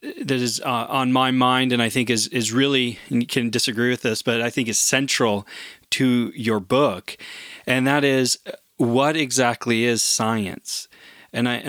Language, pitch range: English, 120-145 Hz